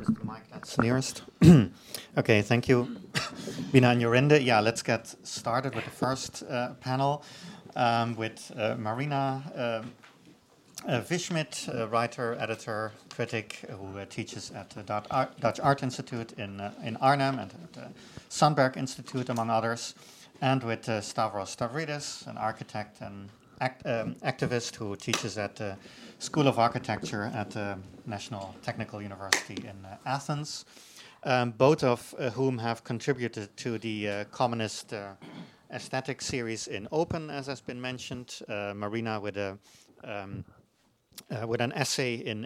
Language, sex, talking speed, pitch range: English, male, 155 wpm, 110-130 Hz